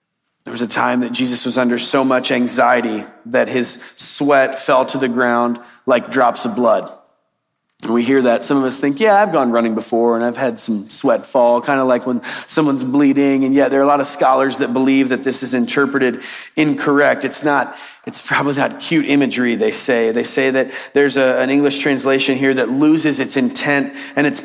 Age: 30-49